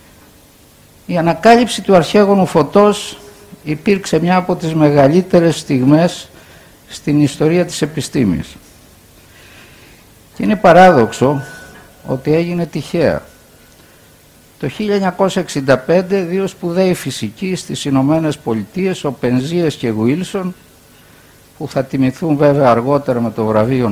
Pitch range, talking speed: 130-180 Hz, 105 wpm